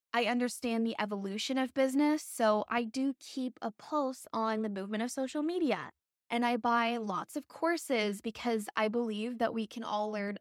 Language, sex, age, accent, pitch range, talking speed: English, female, 10-29, American, 215-265 Hz, 185 wpm